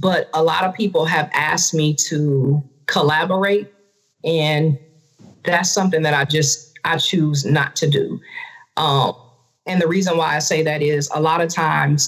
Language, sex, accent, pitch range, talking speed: English, female, American, 155-180 Hz, 170 wpm